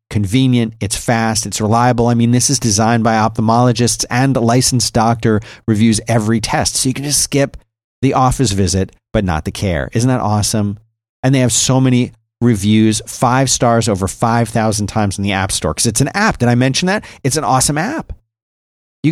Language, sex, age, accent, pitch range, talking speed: English, male, 40-59, American, 105-125 Hz, 195 wpm